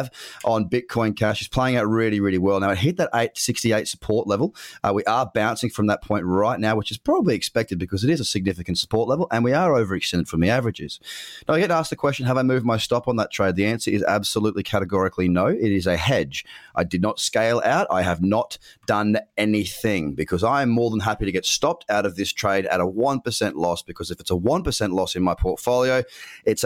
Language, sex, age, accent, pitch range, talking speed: English, male, 30-49, Australian, 100-120 Hz, 235 wpm